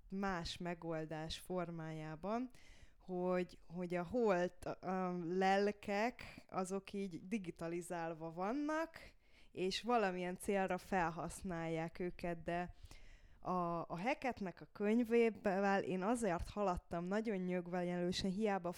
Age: 20-39